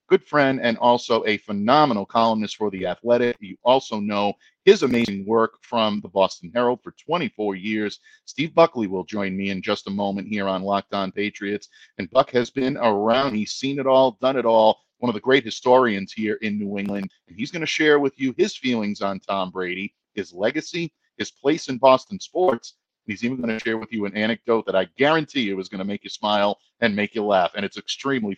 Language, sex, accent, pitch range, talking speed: English, male, American, 100-130 Hz, 220 wpm